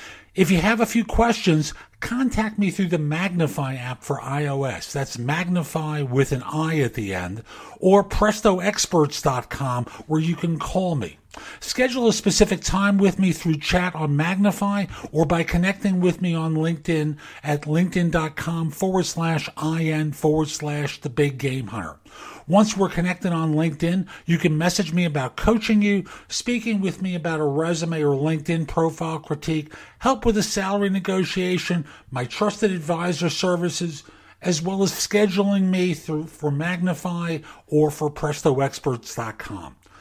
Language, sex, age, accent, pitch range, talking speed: English, male, 50-69, American, 150-190 Hz, 145 wpm